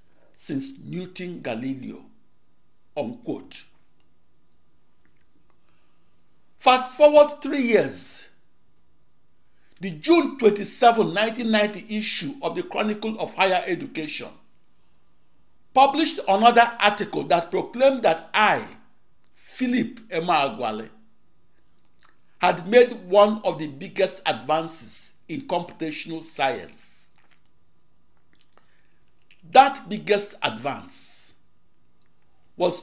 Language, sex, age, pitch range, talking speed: English, male, 60-79, 140-235 Hz, 80 wpm